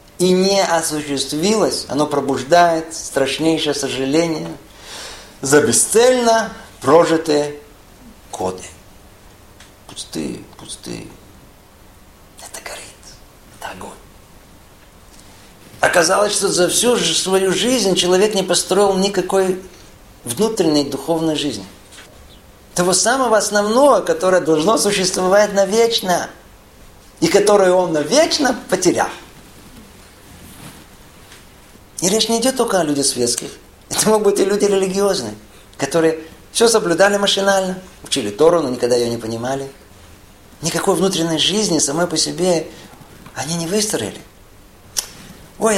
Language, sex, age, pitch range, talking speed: Russian, male, 50-69, 135-195 Hz, 100 wpm